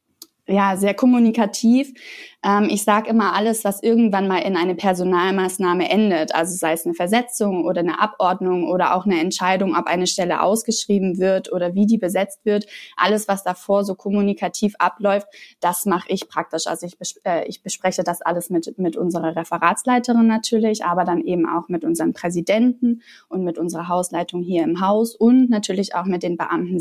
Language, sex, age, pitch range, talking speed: German, female, 20-39, 175-215 Hz, 180 wpm